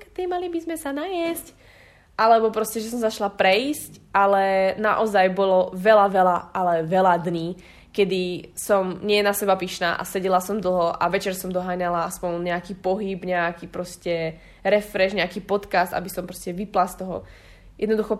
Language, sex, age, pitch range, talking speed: Slovak, female, 20-39, 185-215 Hz, 160 wpm